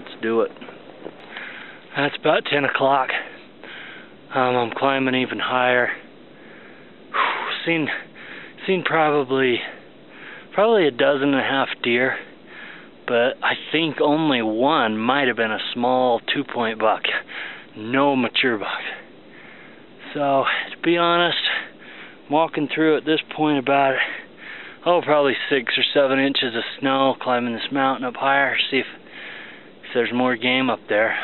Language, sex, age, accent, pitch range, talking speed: English, male, 20-39, American, 110-140 Hz, 130 wpm